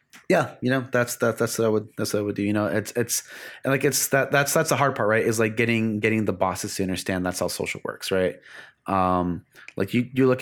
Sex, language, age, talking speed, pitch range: male, English, 30-49, 265 wpm, 95-120 Hz